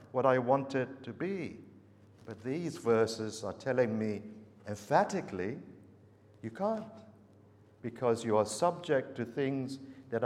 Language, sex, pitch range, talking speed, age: English, male, 105-130 Hz, 130 wpm, 60-79